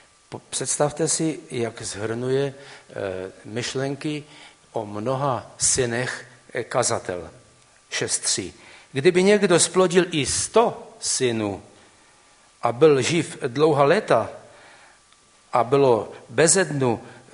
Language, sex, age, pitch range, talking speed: Czech, male, 60-79, 110-140 Hz, 85 wpm